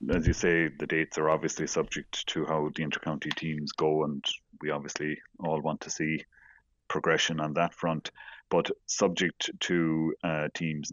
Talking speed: 170 wpm